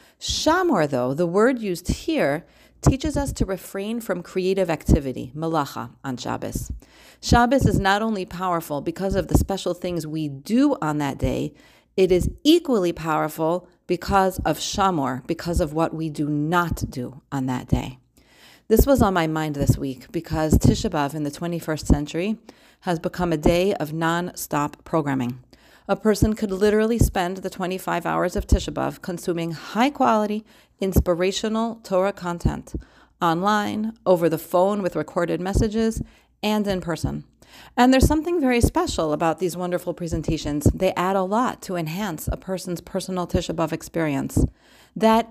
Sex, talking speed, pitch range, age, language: female, 150 wpm, 155-195 Hz, 40-59, English